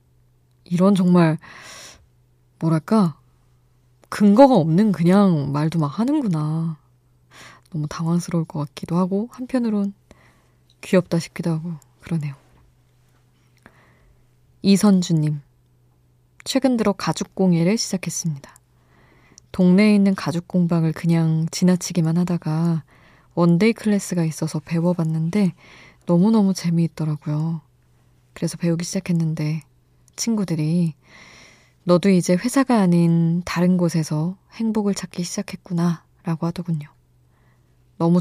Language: Korean